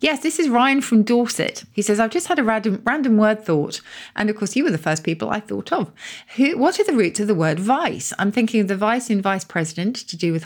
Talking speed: 265 wpm